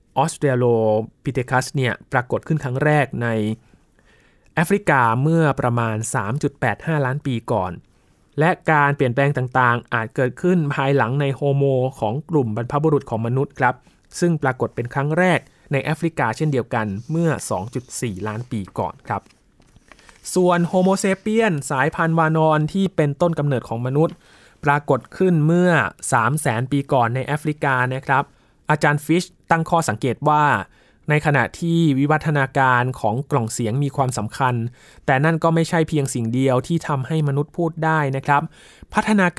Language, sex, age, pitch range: Thai, male, 20-39, 120-155 Hz